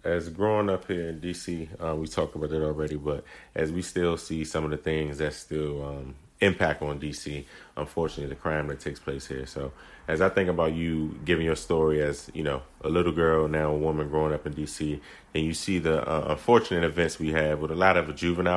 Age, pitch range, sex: 30-49, 75-80 Hz, male